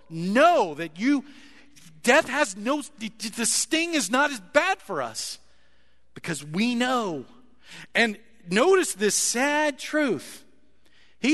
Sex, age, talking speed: male, 40-59, 120 wpm